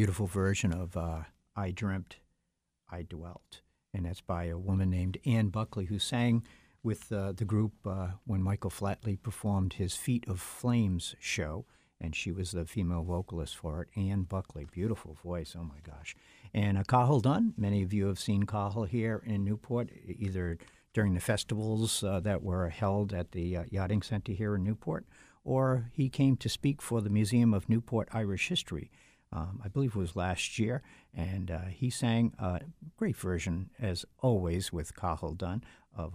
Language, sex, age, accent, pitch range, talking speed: English, male, 60-79, American, 90-110 Hz, 180 wpm